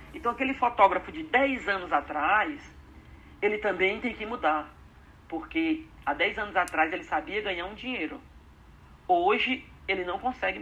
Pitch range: 155-255 Hz